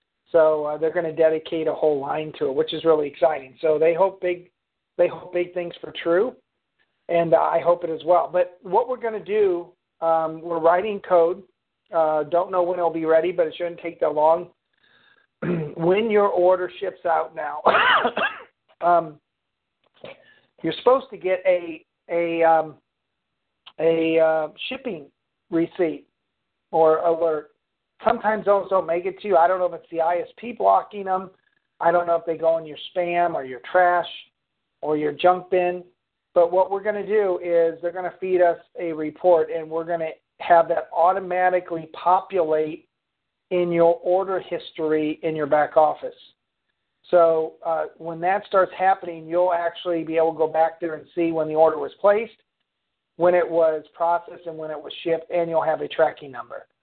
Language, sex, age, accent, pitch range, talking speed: English, male, 50-69, American, 160-180 Hz, 185 wpm